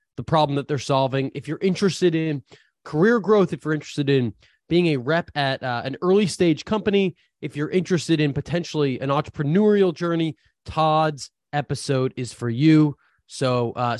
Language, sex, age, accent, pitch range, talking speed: English, male, 20-39, American, 135-175 Hz, 165 wpm